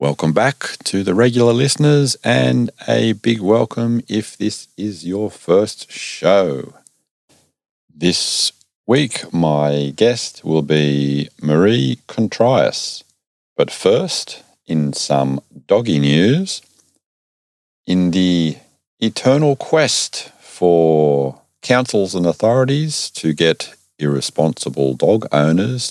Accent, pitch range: Australian, 70-95 Hz